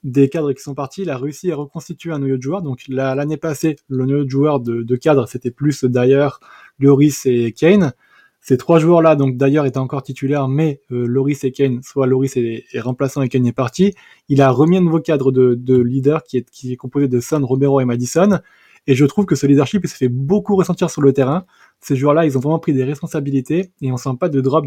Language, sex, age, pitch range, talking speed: French, male, 20-39, 135-165 Hz, 245 wpm